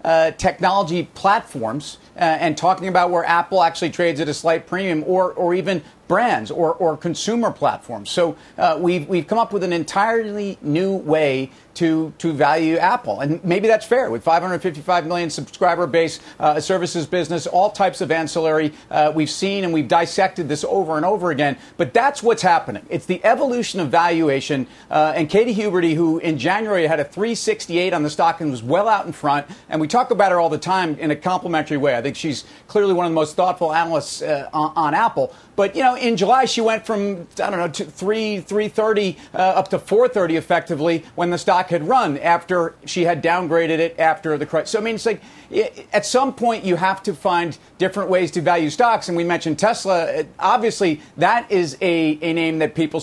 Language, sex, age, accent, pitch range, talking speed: English, male, 40-59, American, 155-195 Hz, 205 wpm